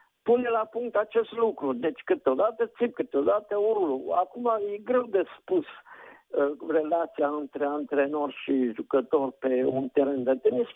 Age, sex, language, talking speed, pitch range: 50-69, male, Romanian, 135 wpm, 155-235 Hz